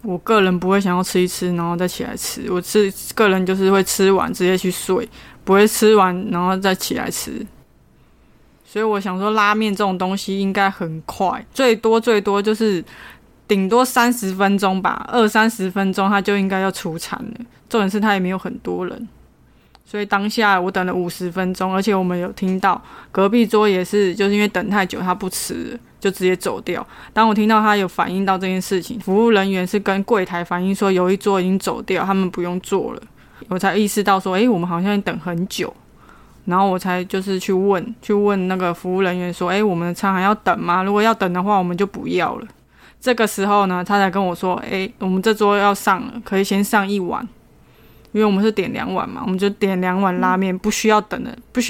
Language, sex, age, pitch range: Chinese, female, 20-39, 185-210 Hz